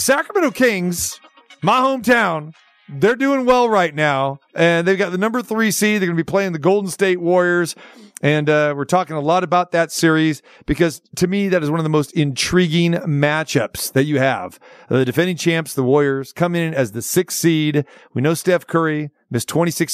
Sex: male